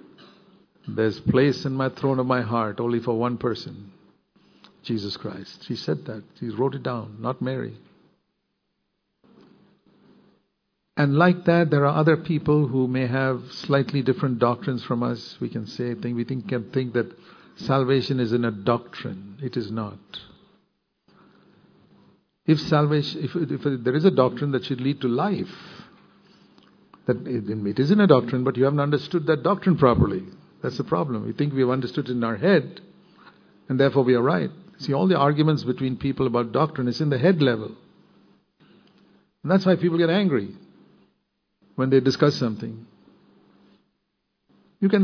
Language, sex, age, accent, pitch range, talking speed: English, male, 60-79, Indian, 120-155 Hz, 165 wpm